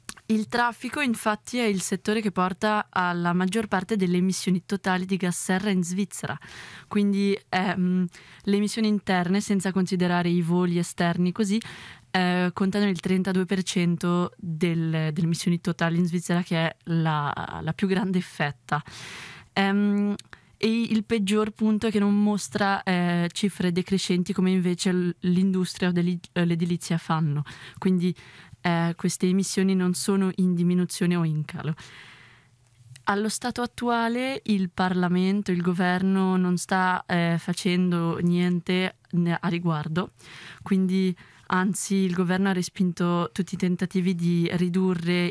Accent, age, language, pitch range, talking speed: native, 20-39, Italian, 175-195 Hz, 130 wpm